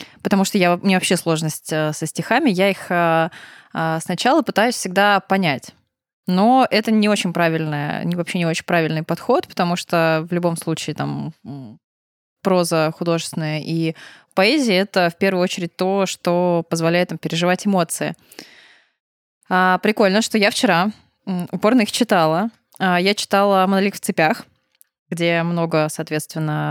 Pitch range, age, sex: 170-210 Hz, 20-39, female